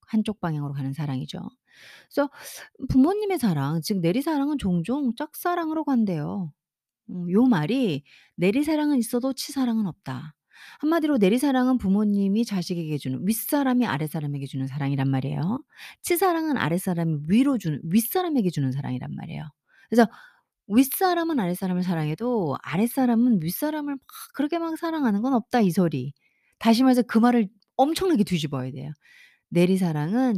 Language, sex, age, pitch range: Korean, female, 30-49, 170-255 Hz